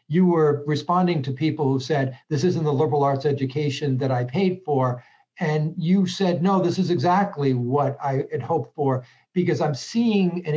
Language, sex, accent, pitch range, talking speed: English, male, American, 135-175 Hz, 185 wpm